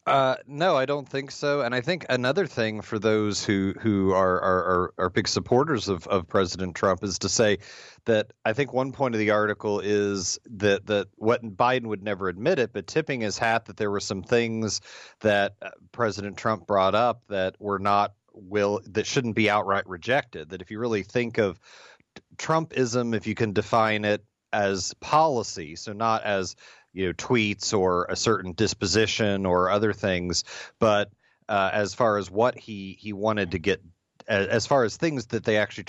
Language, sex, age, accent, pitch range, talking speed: English, male, 40-59, American, 95-115 Hz, 190 wpm